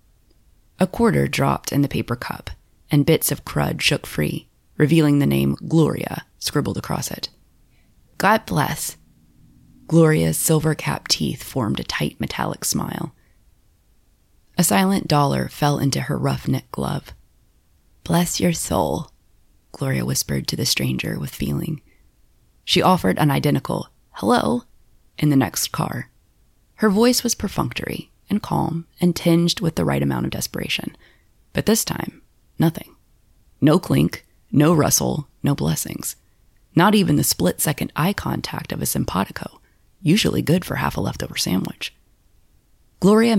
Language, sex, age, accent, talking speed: English, female, 20-39, American, 135 wpm